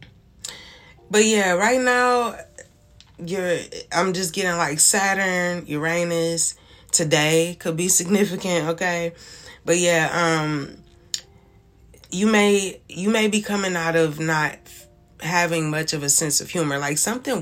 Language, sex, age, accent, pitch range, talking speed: English, female, 20-39, American, 145-175 Hz, 130 wpm